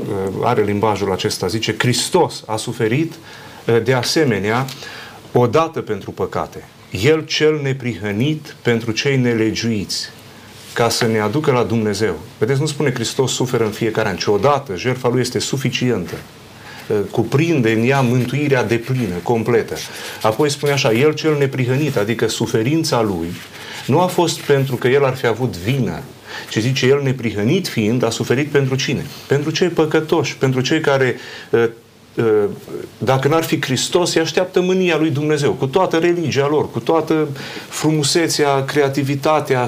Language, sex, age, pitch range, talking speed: Romanian, male, 30-49, 115-150 Hz, 145 wpm